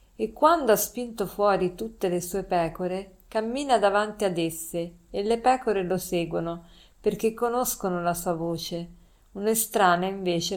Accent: native